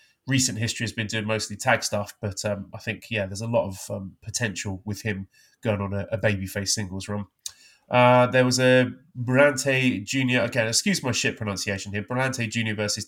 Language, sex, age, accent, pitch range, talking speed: English, male, 20-39, British, 105-125 Hz, 195 wpm